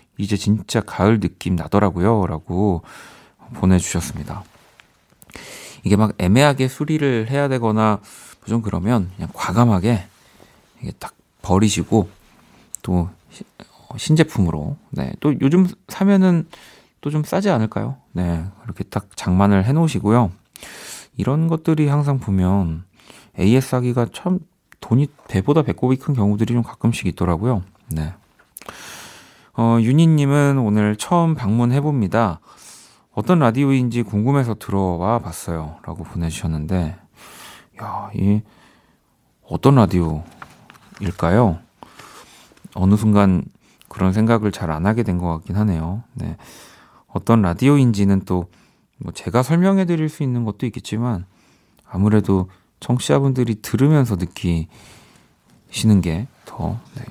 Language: Korean